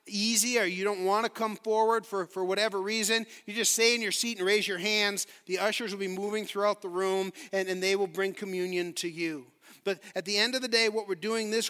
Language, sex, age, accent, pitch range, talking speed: English, male, 40-59, American, 170-210 Hz, 250 wpm